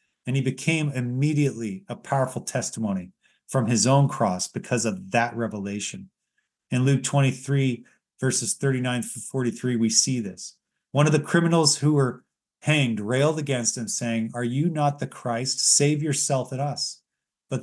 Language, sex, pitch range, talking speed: English, male, 115-150 Hz, 155 wpm